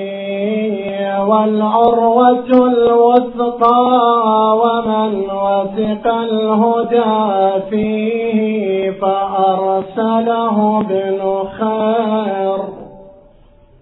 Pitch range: 220-255 Hz